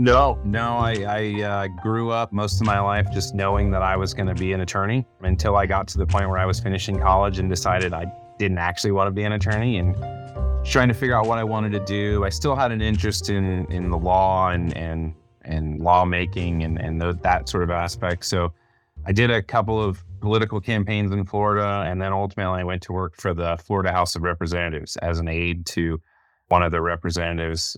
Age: 30-49